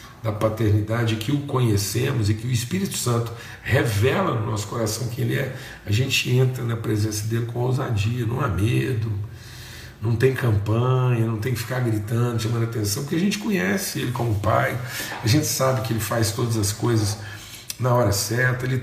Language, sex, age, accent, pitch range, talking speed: Portuguese, male, 50-69, Brazilian, 110-125 Hz, 185 wpm